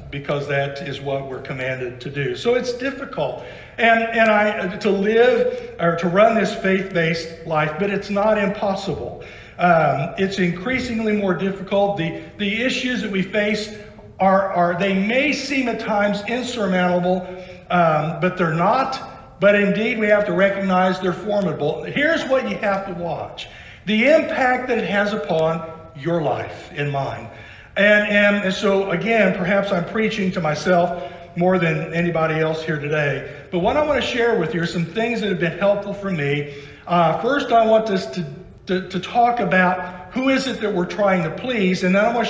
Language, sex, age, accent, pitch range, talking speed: English, male, 60-79, American, 165-215 Hz, 180 wpm